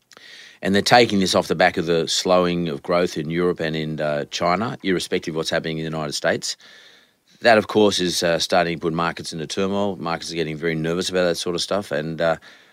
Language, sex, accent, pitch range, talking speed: English, male, Australian, 80-95 Hz, 230 wpm